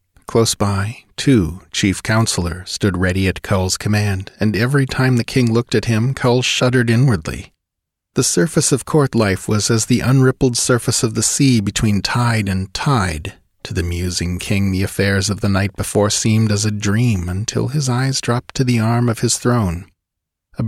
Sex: male